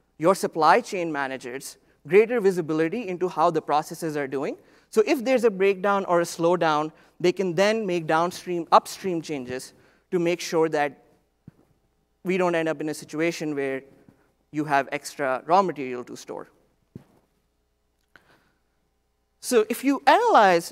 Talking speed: 145 wpm